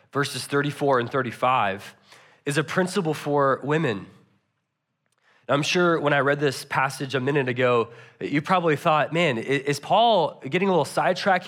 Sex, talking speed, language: male, 150 wpm, English